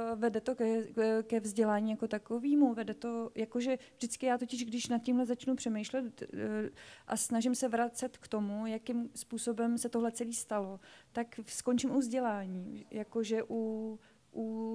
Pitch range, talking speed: 215-240 Hz, 140 wpm